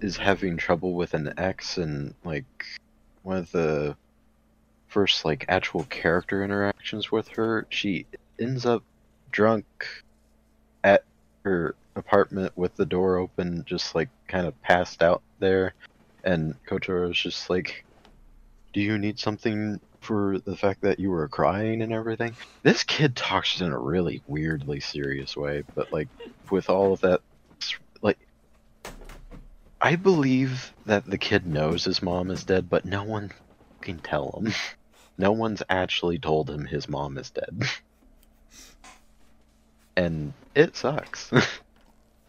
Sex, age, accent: male, 30-49, American